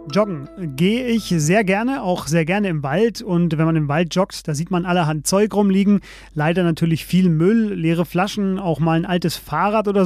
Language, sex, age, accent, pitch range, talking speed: German, male, 30-49, German, 160-200 Hz, 205 wpm